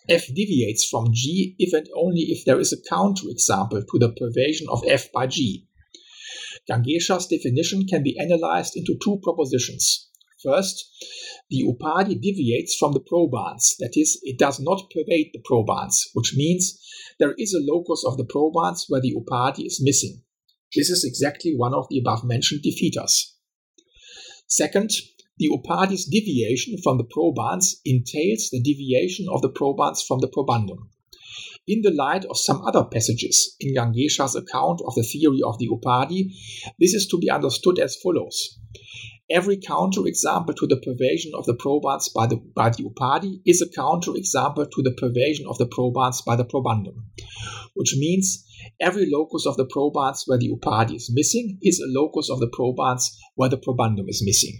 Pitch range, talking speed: 125-185 Hz, 165 wpm